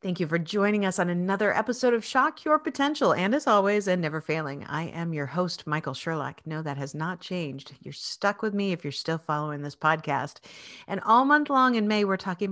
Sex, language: female, English